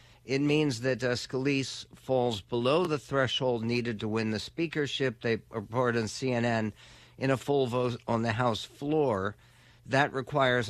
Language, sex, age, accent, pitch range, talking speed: English, male, 50-69, American, 115-140 Hz, 155 wpm